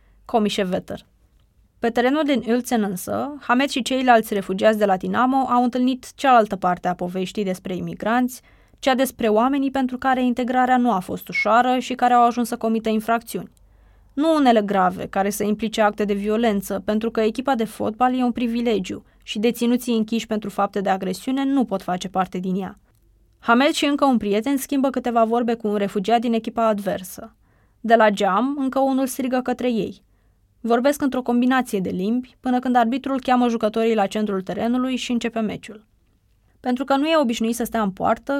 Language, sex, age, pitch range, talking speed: Romanian, female, 20-39, 205-255 Hz, 180 wpm